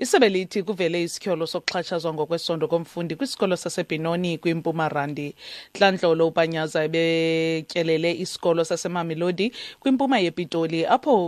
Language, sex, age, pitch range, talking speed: English, female, 30-49, 160-200 Hz, 100 wpm